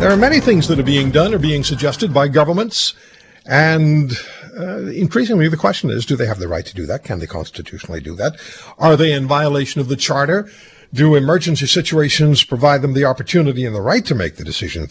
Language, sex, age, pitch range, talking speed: English, male, 50-69, 120-160 Hz, 215 wpm